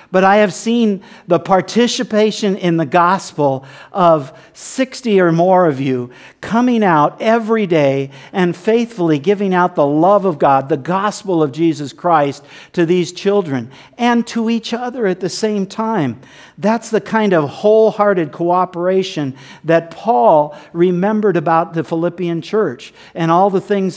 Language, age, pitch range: English, 50-69, 150-205 Hz